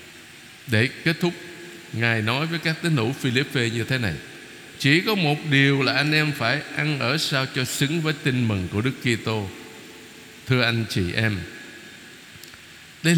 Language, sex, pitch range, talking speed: Vietnamese, male, 115-165 Hz, 170 wpm